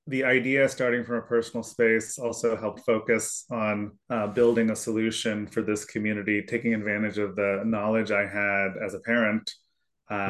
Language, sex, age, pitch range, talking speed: English, male, 20-39, 105-115 Hz, 170 wpm